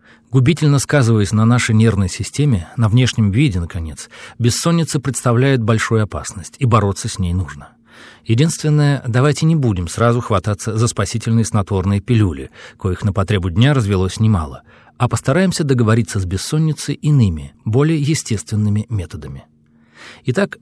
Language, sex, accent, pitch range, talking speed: Russian, male, native, 100-135 Hz, 130 wpm